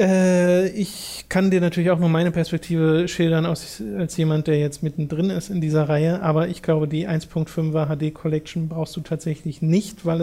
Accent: German